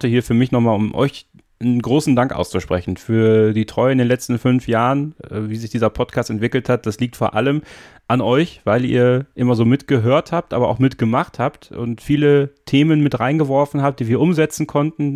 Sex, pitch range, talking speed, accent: male, 115-140 Hz, 200 wpm, German